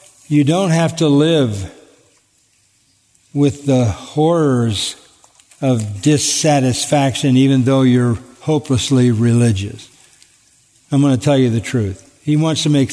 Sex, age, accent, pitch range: male, 50-69, American, 125-175 Hz